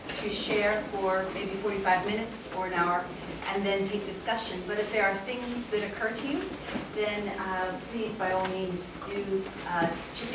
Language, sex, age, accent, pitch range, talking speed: English, female, 30-49, American, 190-230 Hz, 180 wpm